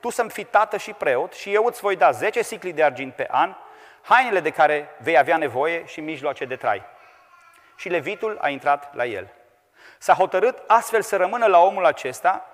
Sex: male